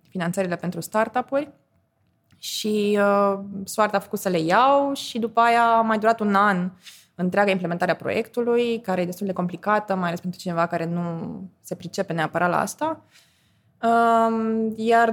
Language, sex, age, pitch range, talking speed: Romanian, female, 20-39, 185-220 Hz, 155 wpm